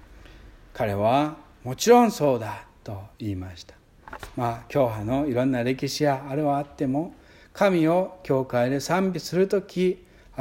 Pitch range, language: 115-160 Hz, Japanese